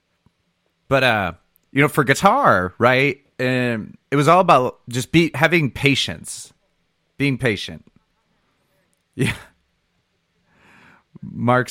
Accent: American